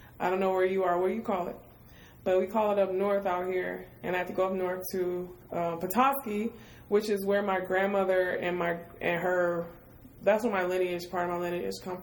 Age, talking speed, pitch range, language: 20-39, 230 wpm, 180-220 Hz, English